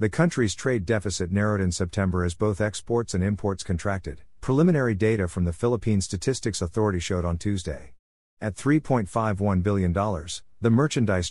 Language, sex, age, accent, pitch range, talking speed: English, male, 50-69, American, 90-115 Hz, 150 wpm